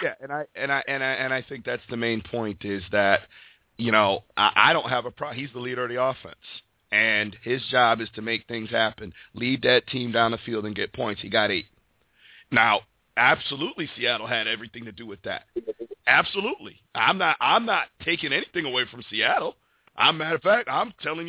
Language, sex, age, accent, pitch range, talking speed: English, male, 40-59, American, 115-135 Hz, 210 wpm